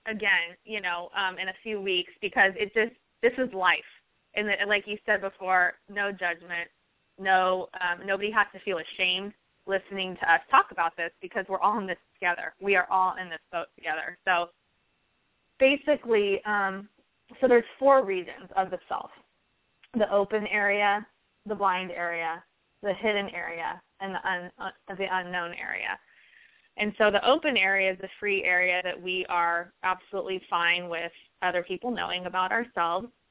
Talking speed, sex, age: 165 wpm, female, 20-39